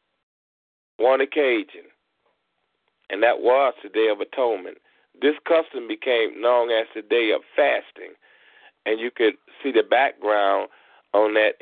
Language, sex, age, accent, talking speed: English, male, 40-59, American, 135 wpm